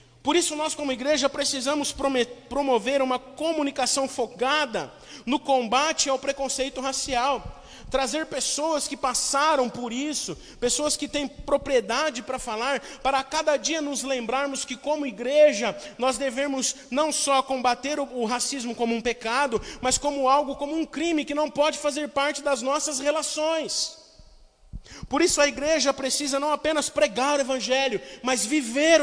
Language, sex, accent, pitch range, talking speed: Portuguese, male, Brazilian, 220-285 Hz, 150 wpm